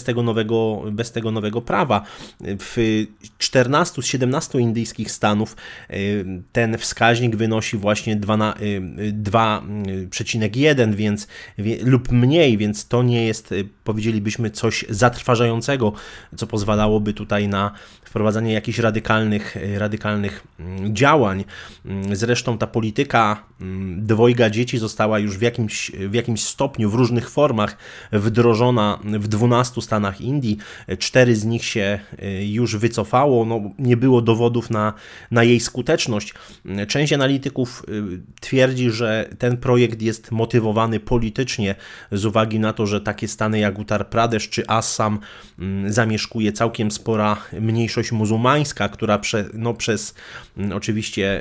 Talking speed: 120 wpm